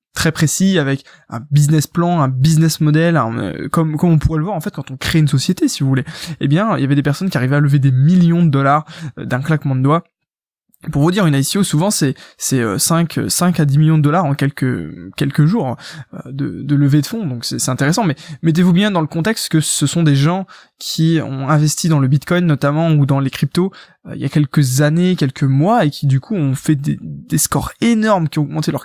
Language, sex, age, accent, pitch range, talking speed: French, male, 20-39, French, 140-170 Hz, 240 wpm